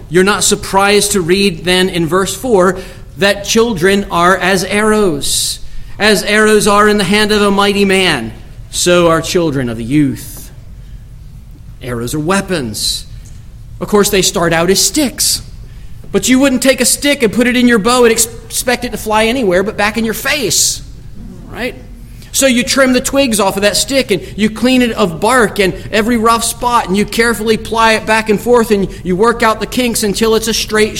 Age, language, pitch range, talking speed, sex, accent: 40-59, English, 130-210 Hz, 195 wpm, male, American